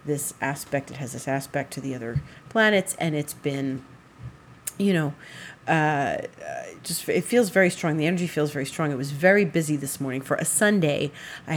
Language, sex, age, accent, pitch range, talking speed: English, female, 40-59, American, 145-195 Hz, 185 wpm